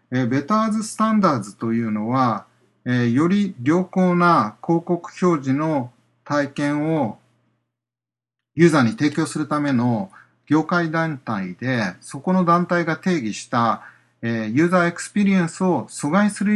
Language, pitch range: Japanese, 120-180 Hz